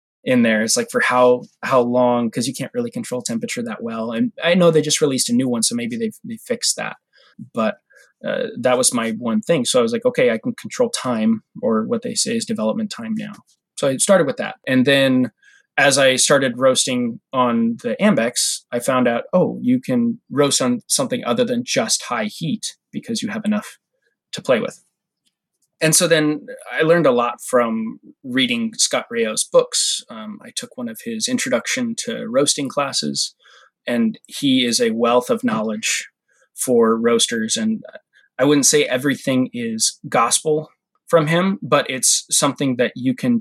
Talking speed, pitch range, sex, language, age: 190 wpm, 155-245 Hz, male, English, 20-39